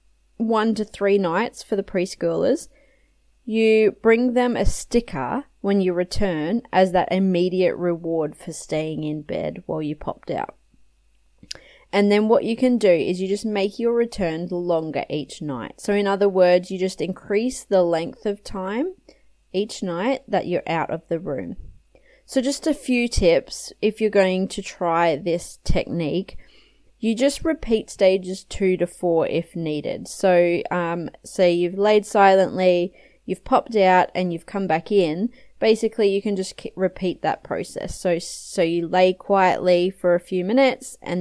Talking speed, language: 165 wpm, English